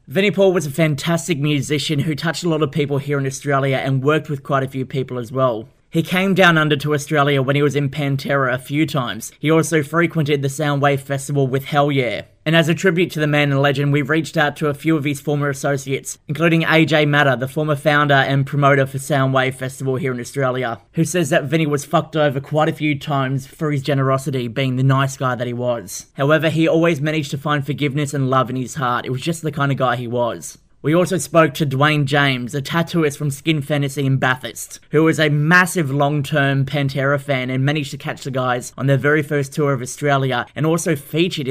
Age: 20-39